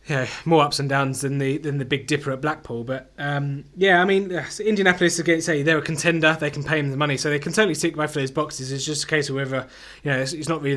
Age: 20-39